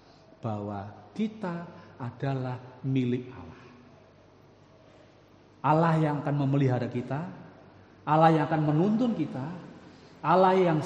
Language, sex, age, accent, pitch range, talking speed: Indonesian, male, 50-69, native, 105-145 Hz, 95 wpm